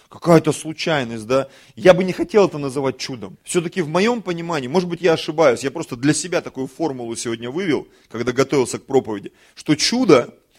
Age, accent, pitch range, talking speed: 30-49, native, 130-185 Hz, 180 wpm